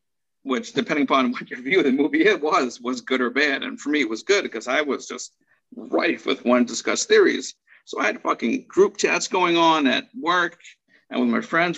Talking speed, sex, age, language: 225 wpm, male, 50-69, English